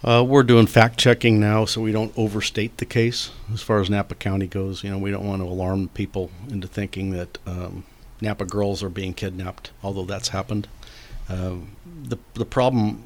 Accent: American